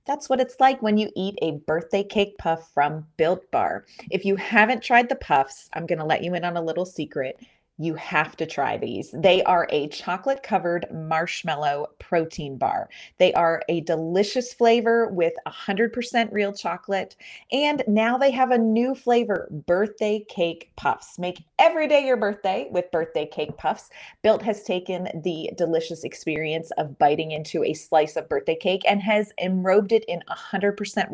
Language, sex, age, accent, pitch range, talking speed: English, female, 30-49, American, 170-220 Hz, 170 wpm